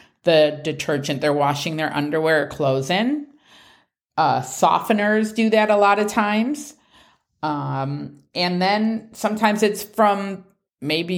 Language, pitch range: English, 165-200 Hz